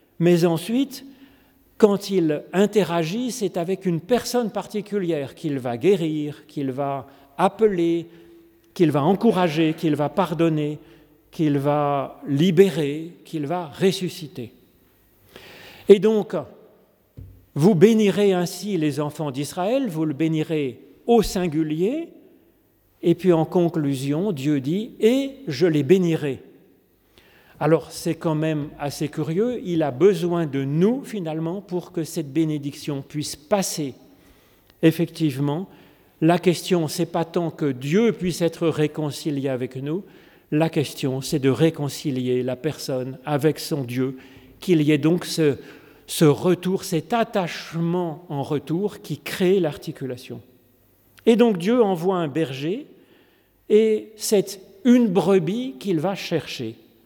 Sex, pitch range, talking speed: male, 145-190 Hz, 125 wpm